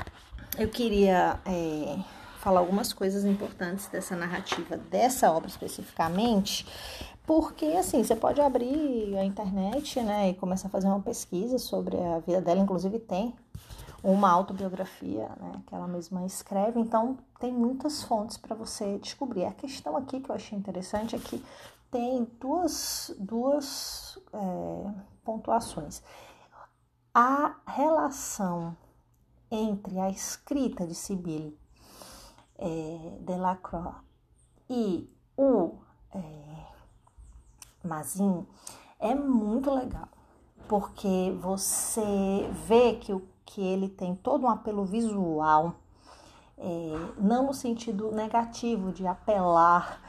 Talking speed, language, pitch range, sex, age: 105 wpm, Portuguese, 185-235 Hz, female, 30-49